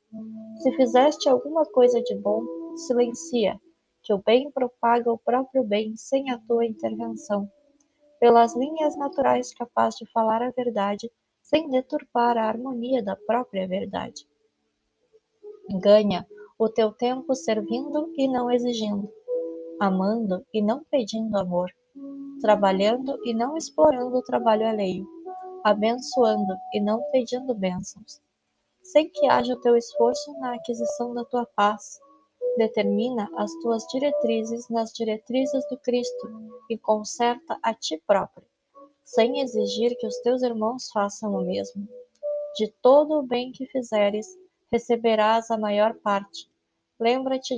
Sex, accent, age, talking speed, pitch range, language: female, Brazilian, 20-39, 130 wpm, 215-265 Hz, Portuguese